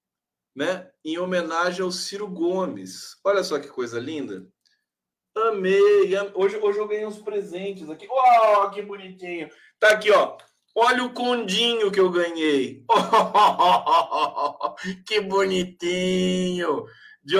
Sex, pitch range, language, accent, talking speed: male, 145-200 Hz, Portuguese, Brazilian, 140 wpm